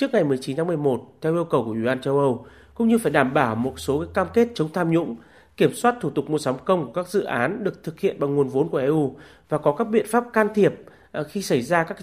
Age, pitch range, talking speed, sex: 30-49, 140-195 Hz, 275 wpm, male